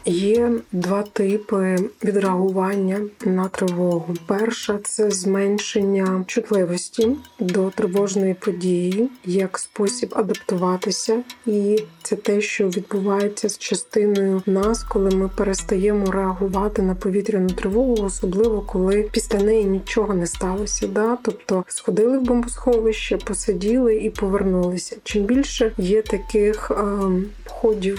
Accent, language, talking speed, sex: native, Ukrainian, 115 wpm, female